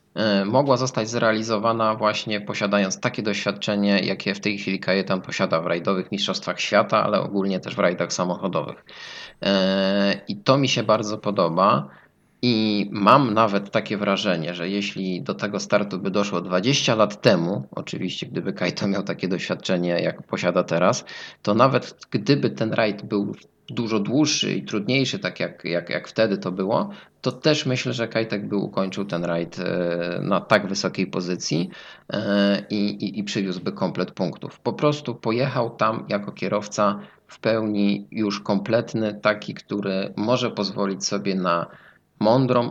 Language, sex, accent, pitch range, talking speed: Polish, male, native, 95-110 Hz, 150 wpm